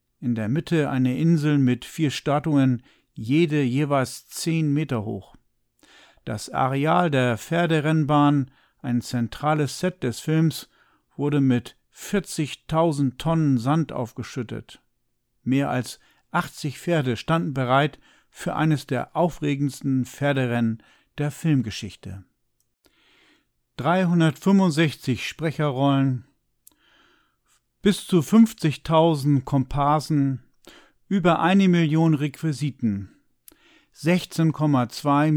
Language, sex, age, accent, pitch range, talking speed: German, male, 50-69, German, 130-165 Hz, 90 wpm